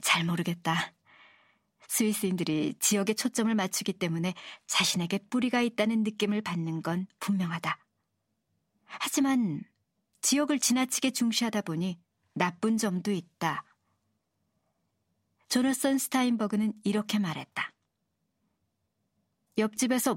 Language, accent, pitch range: Korean, native, 185-240 Hz